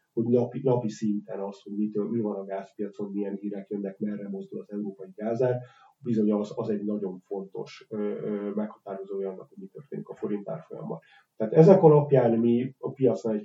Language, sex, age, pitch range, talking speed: Hungarian, male, 30-49, 100-110 Hz, 175 wpm